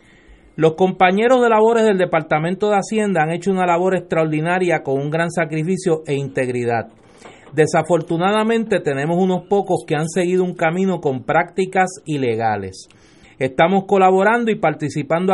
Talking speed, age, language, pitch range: 135 wpm, 30-49, Spanish, 160-200 Hz